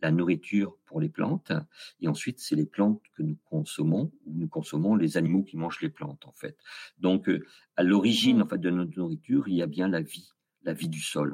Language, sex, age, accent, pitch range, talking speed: French, male, 50-69, French, 75-105 Hz, 220 wpm